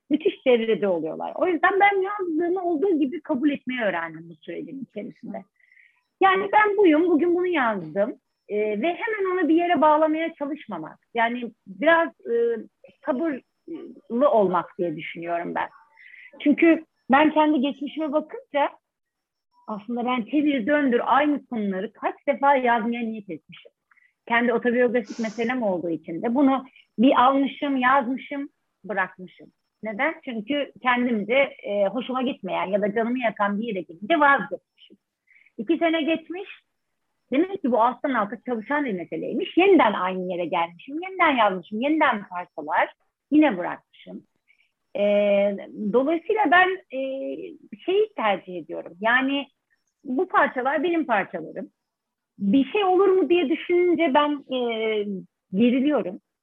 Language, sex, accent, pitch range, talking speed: Turkish, female, native, 220-330 Hz, 125 wpm